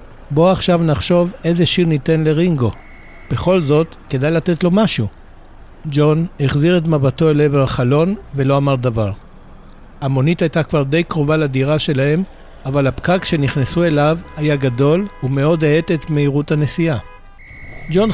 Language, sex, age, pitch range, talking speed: Hebrew, male, 60-79, 135-170 Hz, 140 wpm